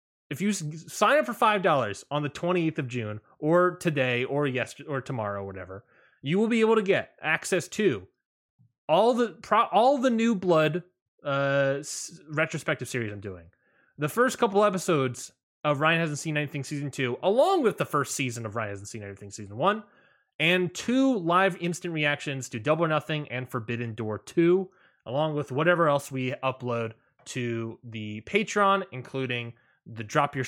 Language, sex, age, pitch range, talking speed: English, male, 20-39, 125-165 Hz, 175 wpm